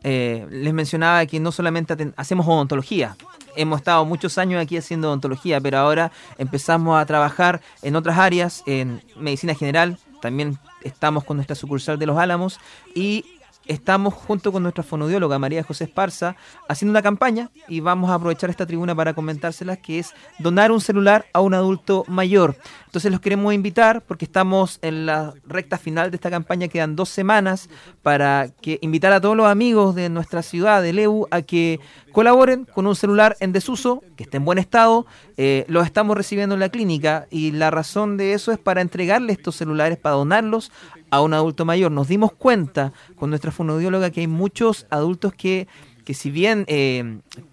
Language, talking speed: Spanish, 180 wpm